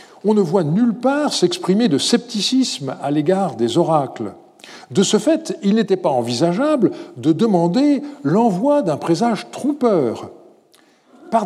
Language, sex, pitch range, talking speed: French, male, 165-275 Hz, 135 wpm